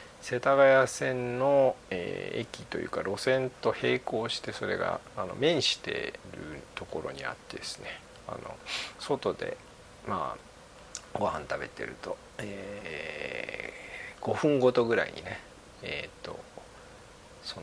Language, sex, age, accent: Japanese, male, 40-59, native